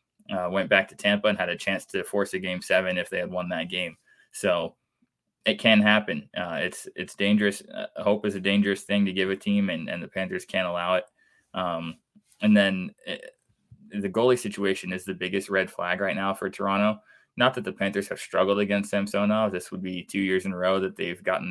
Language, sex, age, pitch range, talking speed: English, male, 20-39, 95-105 Hz, 220 wpm